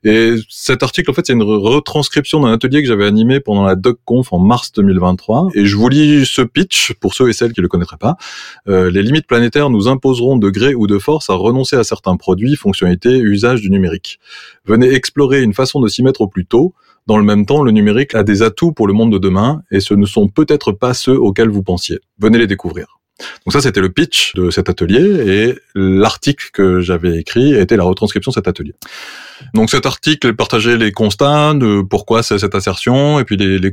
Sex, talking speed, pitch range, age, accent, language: male, 225 wpm, 95-130 Hz, 30-49, French, French